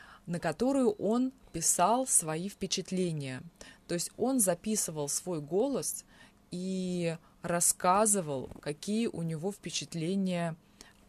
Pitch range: 160-210 Hz